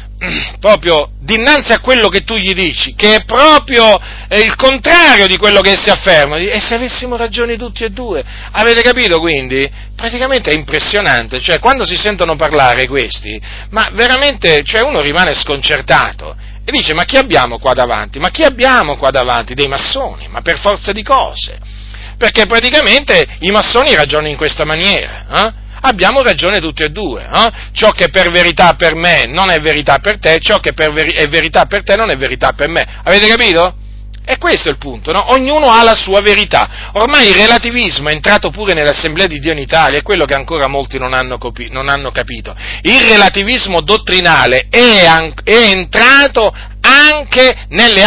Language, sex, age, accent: Italian, male, 40-59, native